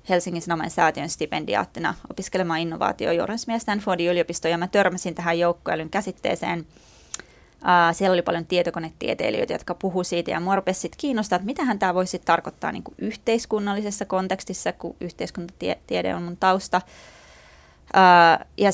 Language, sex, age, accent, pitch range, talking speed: Finnish, female, 20-39, native, 170-200 Hz, 125 wpm